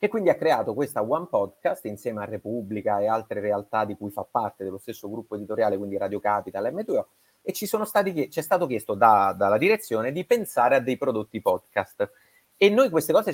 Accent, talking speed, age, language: native, 205 wpm, 30-49, Italian